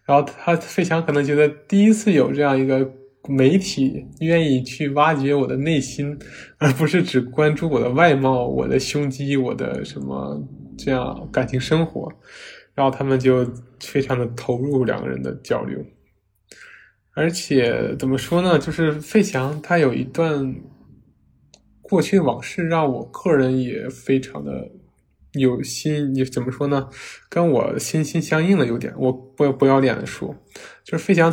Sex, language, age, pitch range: male, Chinese, 20-39, 125-150 Hz